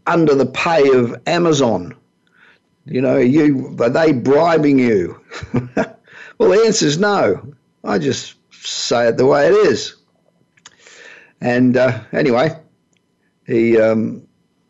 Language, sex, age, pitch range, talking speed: English, male, 50-69, 120-160 Hz, 125 wpm